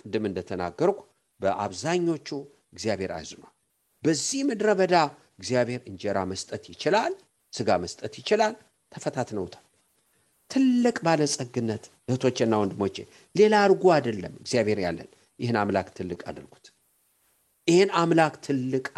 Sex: male